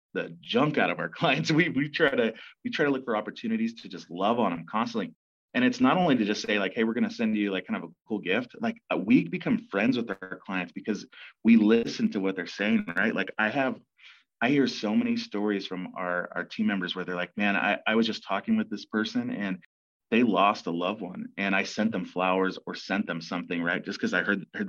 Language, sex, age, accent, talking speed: English, male, 30-49, American, 250 wpm